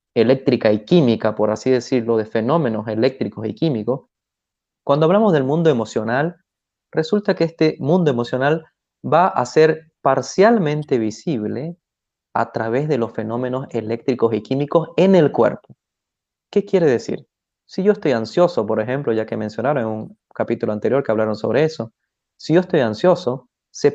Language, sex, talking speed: Spanish, male, 155 wpm